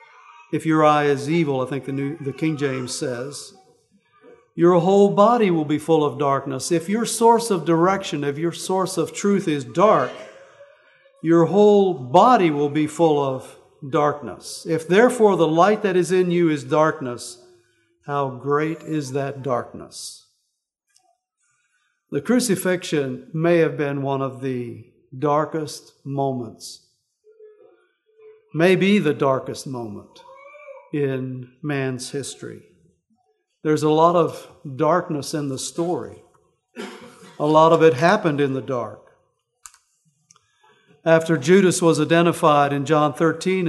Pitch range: 140-185 Hz